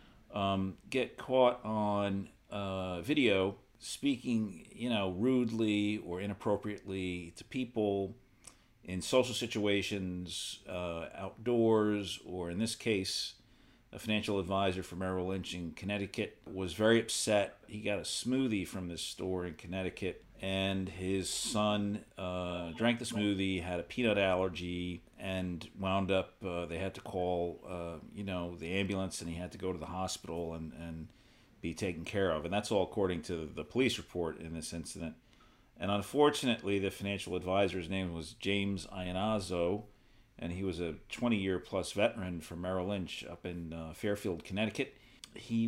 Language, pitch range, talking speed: English, 90-105 Hz, 150 wpm